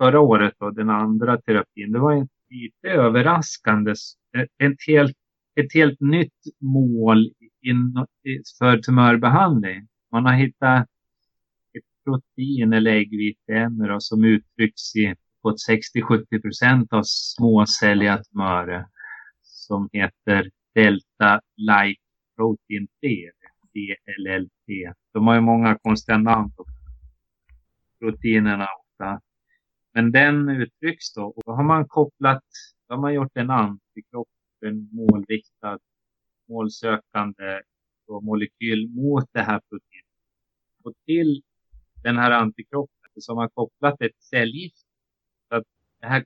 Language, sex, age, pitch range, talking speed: Swedish, male, 30-49, 105-130 Hz, 110 wpm